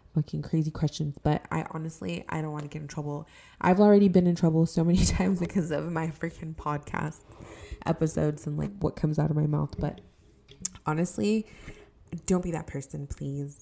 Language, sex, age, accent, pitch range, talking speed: English, female, 20-39, American, 150-175 Hz, 185 wpm